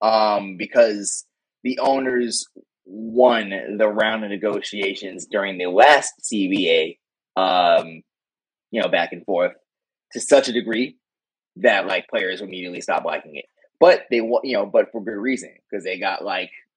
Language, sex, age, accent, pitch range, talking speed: English, male, 20-39, American, 100-125 Hz, 150 wpm